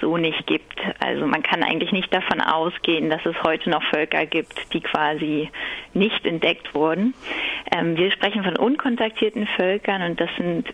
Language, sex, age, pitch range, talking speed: German, female, 30-49, 165-200 Hz, 170 wpm